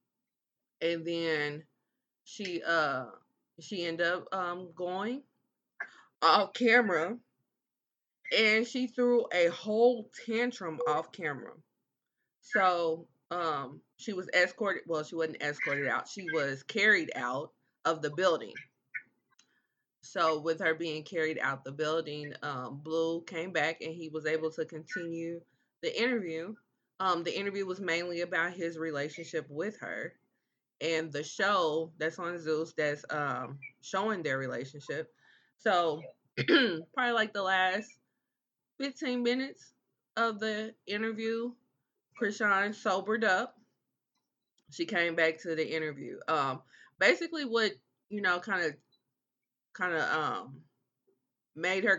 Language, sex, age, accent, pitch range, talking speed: English, female, 20-39, American, 160-210 Hz, 125 wpm